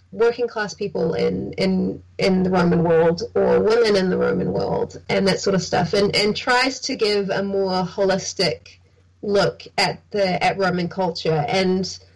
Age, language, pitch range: 20-39, English, 170-200 Hz